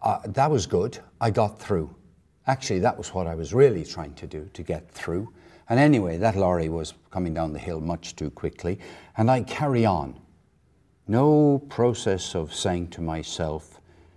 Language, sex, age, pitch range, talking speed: English, male, 60-79, 80-110 Hz, 180 wpm